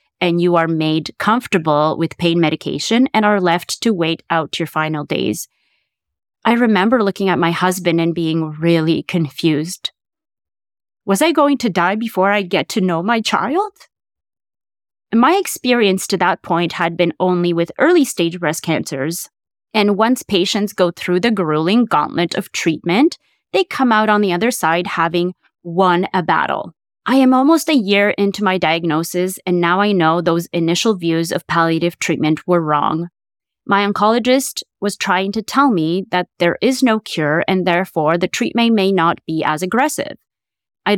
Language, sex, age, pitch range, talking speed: English, female, 20-39, 165-220 Hz, 165 wpm